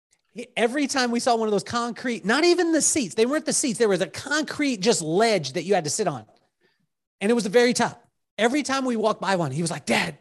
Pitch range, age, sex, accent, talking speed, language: 195-285 Hz, 30-49, male, American, 260 wpm, English